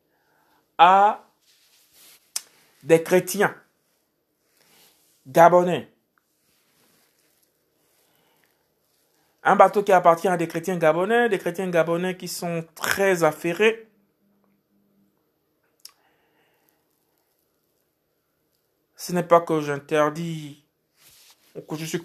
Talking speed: 75 wpm